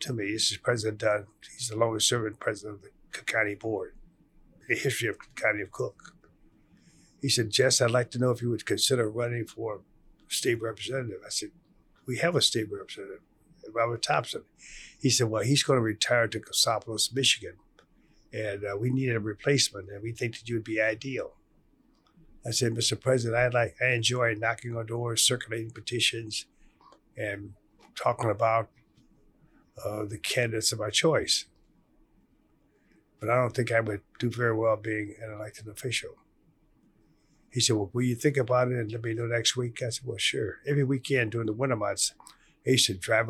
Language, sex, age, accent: English, male, 50-69, American